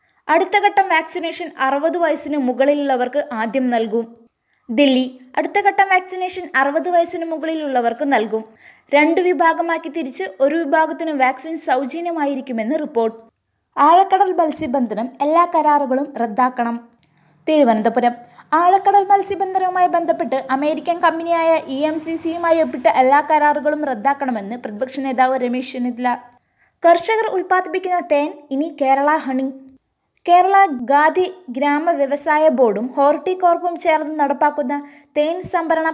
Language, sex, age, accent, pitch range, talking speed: Malayalam, female, 20-39, native, 260-330 Hz, 105 wpm